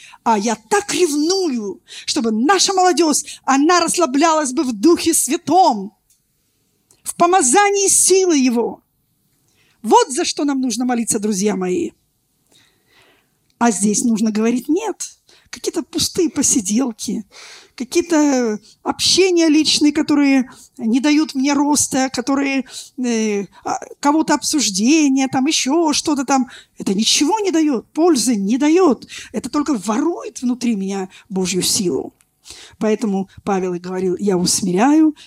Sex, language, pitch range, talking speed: female, Russian, 225-320 Hz, 115 wpm